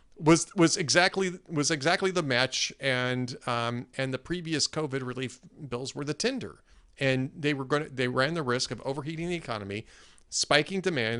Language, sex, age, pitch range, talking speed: English, male, 40-59, 120-155 Hz, 170 wpm